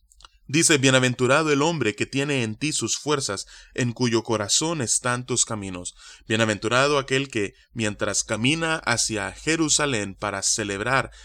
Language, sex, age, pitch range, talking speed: Spanish, male, 20-39, 105-135 Hz, 135 wpm